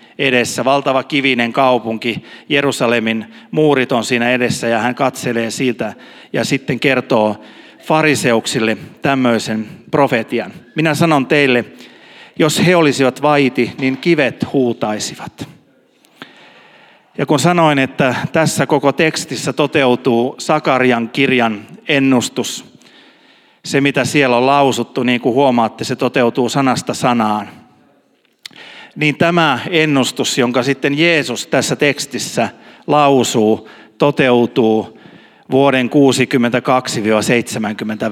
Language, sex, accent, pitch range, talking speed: Finnish, male, native, 120-145 Hz, 100 wpm